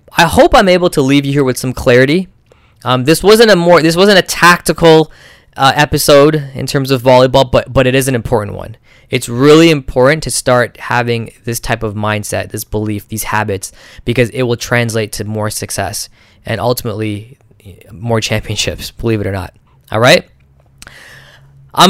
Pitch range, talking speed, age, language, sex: 110-150 Hz, 180 wpm, 10-29, English, male